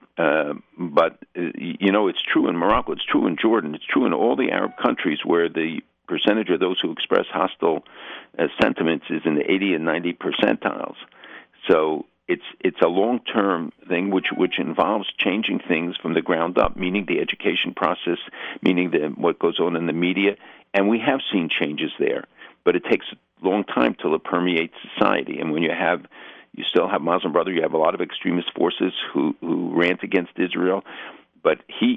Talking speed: 195 wpm